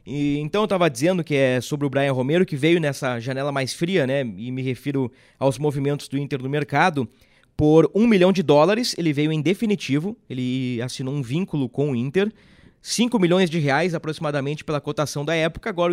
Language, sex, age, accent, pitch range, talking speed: Portuguese, male, 20-39, Brazilian, 140-185 Hz, 200 wpm